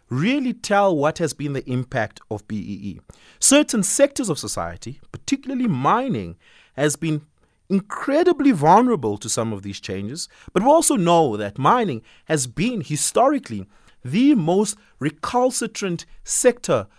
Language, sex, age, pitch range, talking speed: English, male, 30-49, 105-175 Hz, 130 wpm